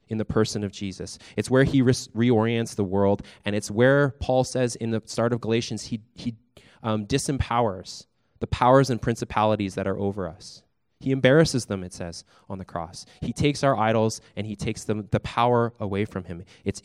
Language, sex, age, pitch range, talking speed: English, male, 20-39, 95-115 Hz, 200 wpm